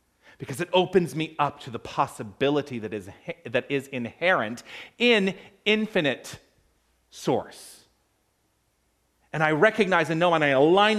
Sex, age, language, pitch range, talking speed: male, 40-59, English, 95-145 Hz, 130 wpm